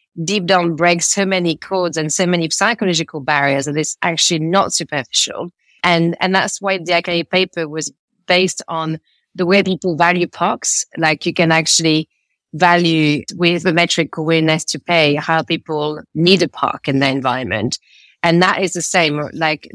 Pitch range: 155-185 Hz